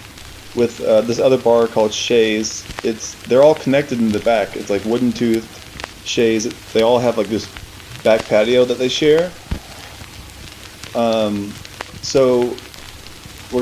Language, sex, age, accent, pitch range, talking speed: English, male, 30-49, American, 105-125 Hz, 140 wpm